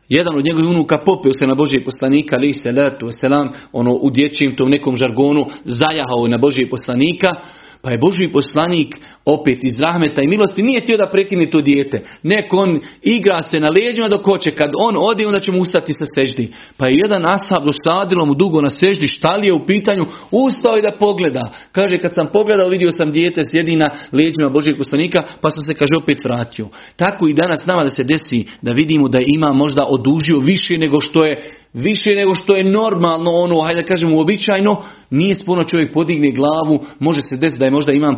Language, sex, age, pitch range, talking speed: Croatian, male, 40-59, 140-175 Hz, 205 wpm